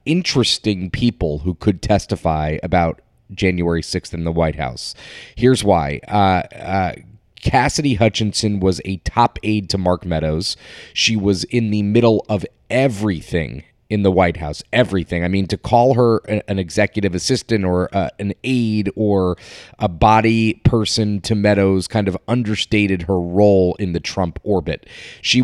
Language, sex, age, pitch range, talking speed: English, male, 30-49, 95-120 Hz, 155 wpm